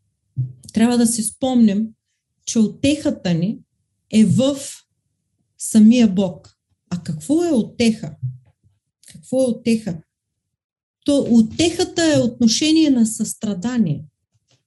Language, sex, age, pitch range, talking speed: Bulgarian, female, 40-59, 160-240 Hz, 95 wpm